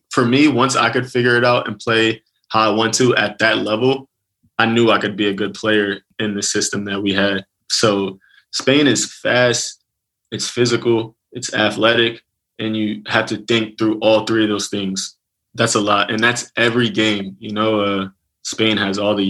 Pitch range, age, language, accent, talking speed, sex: 105-115 Hz, 20-39, English, American, 200 wpm, male